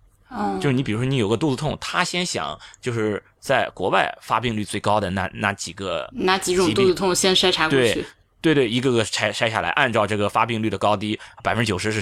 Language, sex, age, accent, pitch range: Chinese, male, 20-39, native, 100-135 Hz